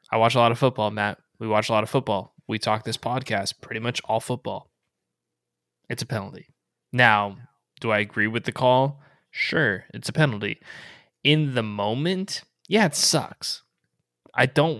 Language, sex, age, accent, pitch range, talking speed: English, male, 20-39, American, 110-145 Hz, 175 wpm